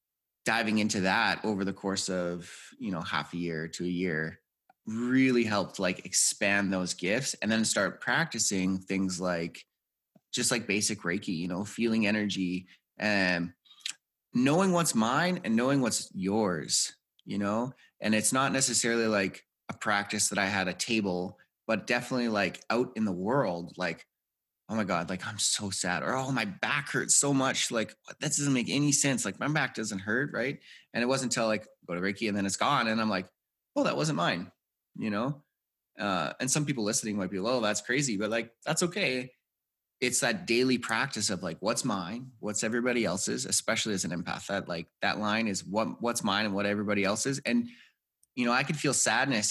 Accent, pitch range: American, 95-125 Hz